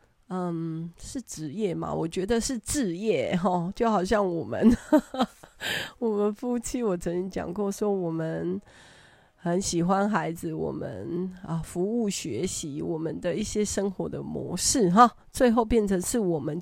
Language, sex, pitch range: Chinese, female, 170-215 Hz